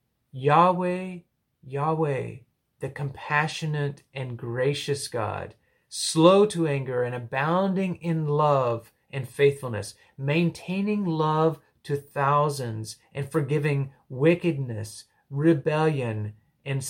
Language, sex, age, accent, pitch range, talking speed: English, male, 30-49, American, 125-160 Hz, 90 wpm